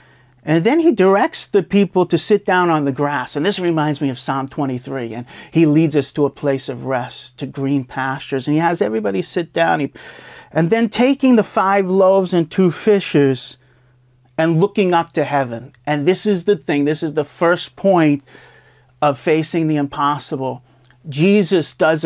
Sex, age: male, 40-59